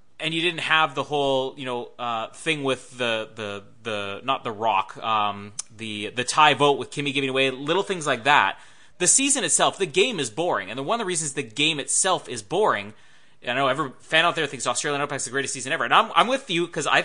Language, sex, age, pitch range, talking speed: English, male, 30-49, 130-165 Hz, 245 wpm